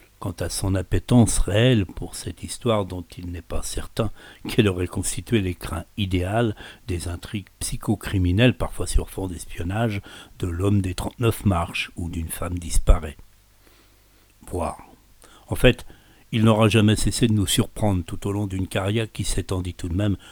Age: 60-79